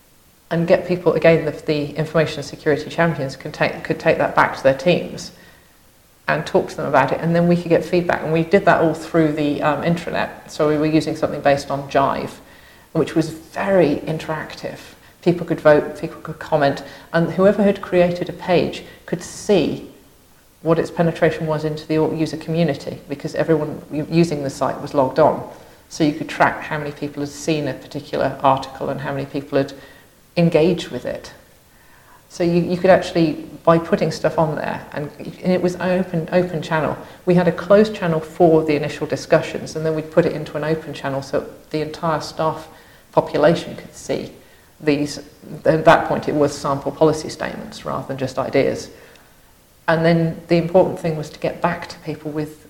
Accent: British